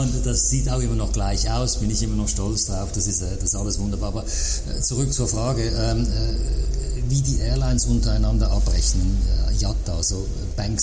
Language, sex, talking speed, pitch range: German, male, 170 wpm, 95-115 Hz